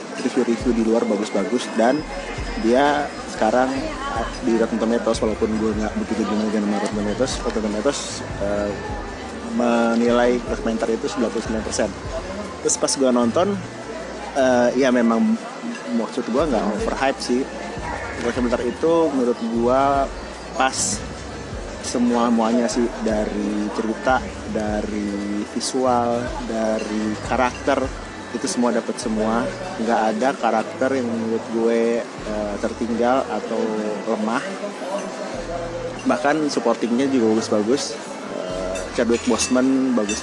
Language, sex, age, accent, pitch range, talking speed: Indonesian, male, 30-49, native, 110-130 Hz, 110 wpm